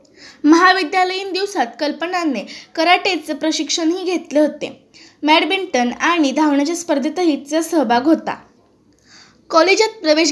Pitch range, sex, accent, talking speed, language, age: 290-350 Hz, female, native, 95 wpm, Marathi, 20-39